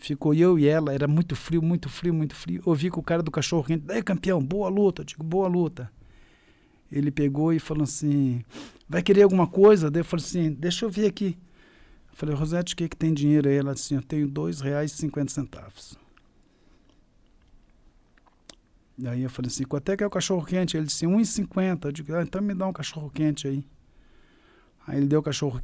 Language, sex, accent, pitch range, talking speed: Portuguese, male, Brazilian, 140-175 Hz, 215 wpm